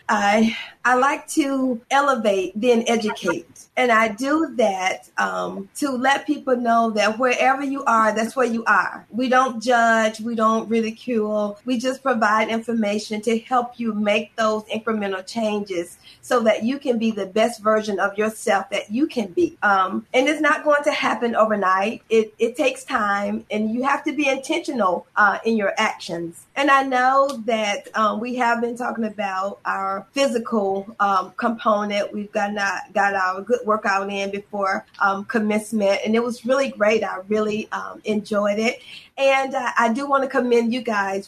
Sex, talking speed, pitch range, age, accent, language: female, 175 wpm, 210-270 Hz, 40-59, American, English